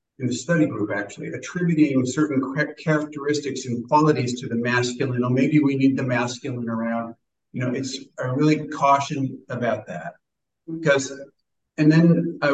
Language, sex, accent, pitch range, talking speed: English, male, American, 130-150 Hz, 155 wpm